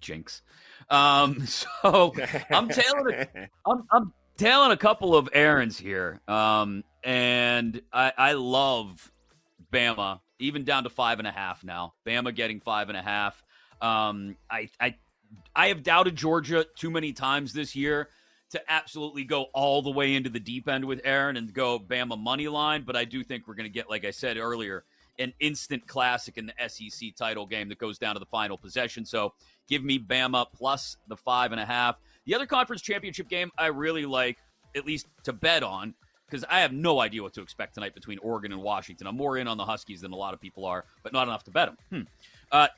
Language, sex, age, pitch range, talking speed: English, male, 30-49, 115-155 Hz, 205 wpm